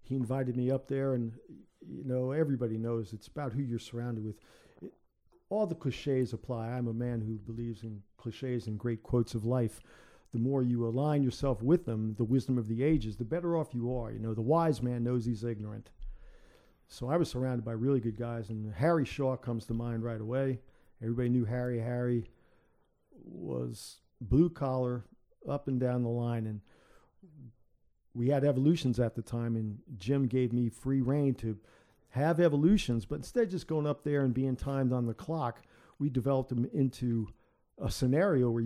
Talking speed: 190 wpm